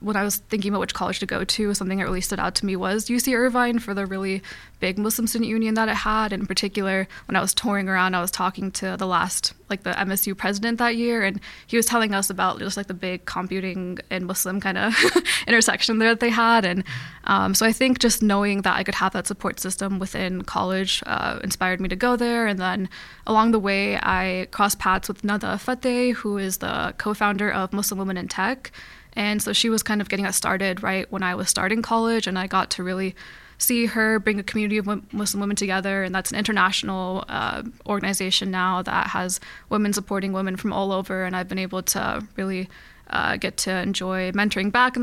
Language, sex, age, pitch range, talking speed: English, female, 10-29, 190-220 Hz, 225 wpm